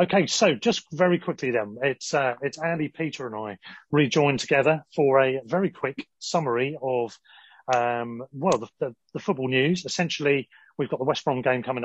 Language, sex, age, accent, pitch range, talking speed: English, male, 30-49, British, 120-165 Hz, 180 wpm